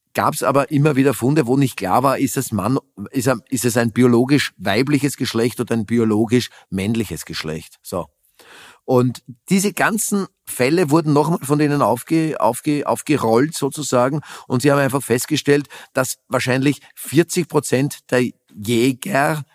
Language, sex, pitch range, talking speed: German, male, 120-150 Hz, 145 wpm